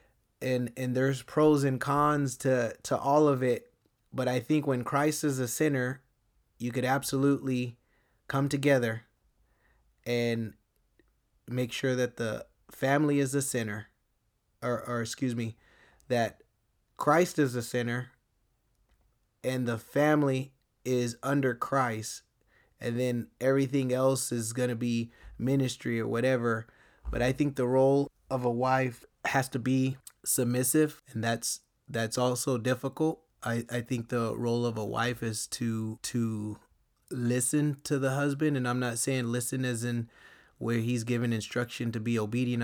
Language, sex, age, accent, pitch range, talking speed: English, male, 20-39, American, 115-135 Hz, 150 wpm